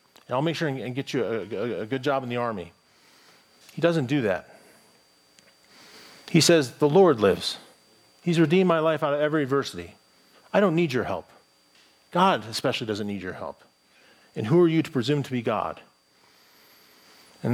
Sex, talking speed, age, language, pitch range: male, 180 wpm, 40-59, English, 105-145 Hz